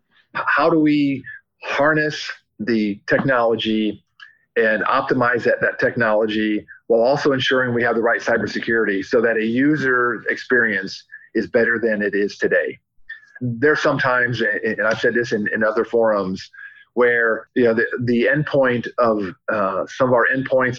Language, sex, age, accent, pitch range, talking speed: English, male, 40-59, American, 110-140 Hz, 155 wpm